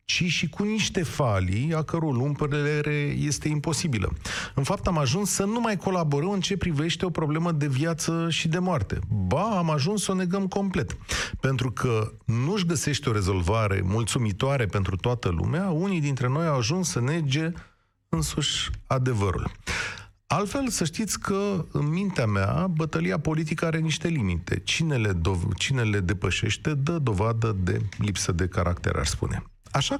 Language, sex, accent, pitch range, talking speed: Romanian, male, native, 100-155 Hz, 160 wpm